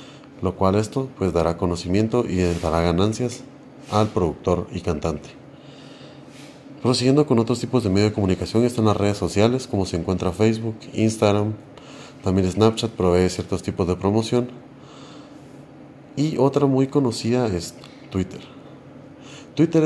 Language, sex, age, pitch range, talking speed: Spanish, male, 40-59, 95-130 Hz, 135 wpm